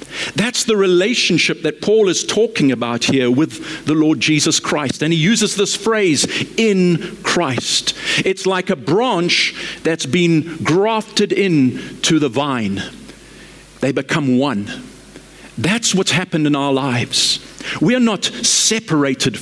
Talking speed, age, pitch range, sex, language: 140 wpm, 50-69, 155-205 Hz, male, English